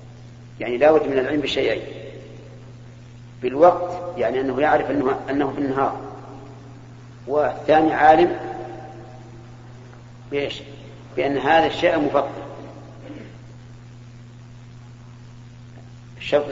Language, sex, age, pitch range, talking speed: Arabic, male, 50-69, 120-135 Hz, 75 wpm